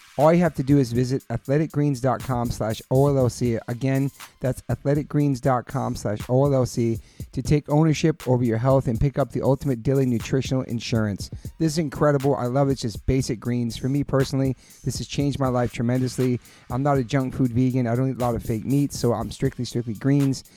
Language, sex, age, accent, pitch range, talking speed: English, male, 40-59, American, 120-140 Hz, 195 wpm